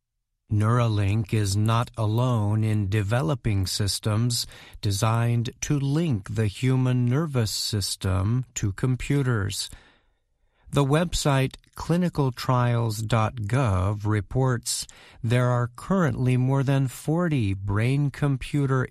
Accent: American